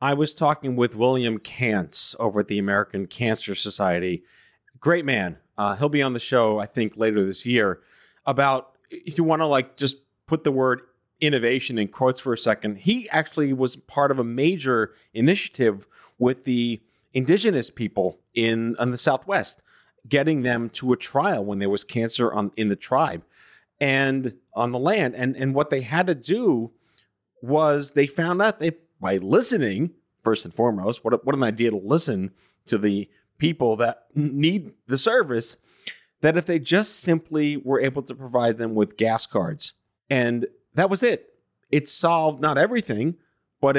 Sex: male